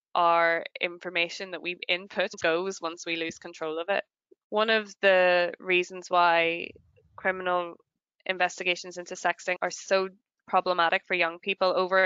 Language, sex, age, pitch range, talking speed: English, female, 10-29, 165-180 Hz, 140 wpm